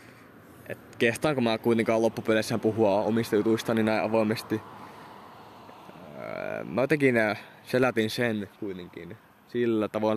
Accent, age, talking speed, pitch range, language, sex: native, 20-39, 95 wpm, 105-125 Hz, Finnish, male